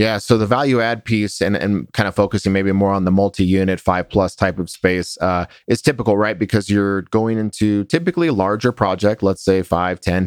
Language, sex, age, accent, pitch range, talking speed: English, male, 30-49, American, 95-105 Hz, 215 wpm